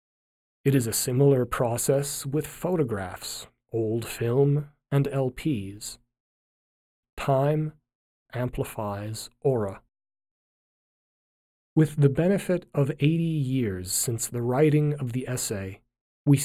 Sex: male